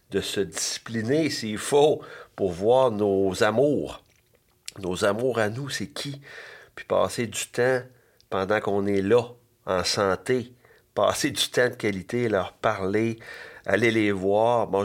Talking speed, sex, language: 145 wpm, male, French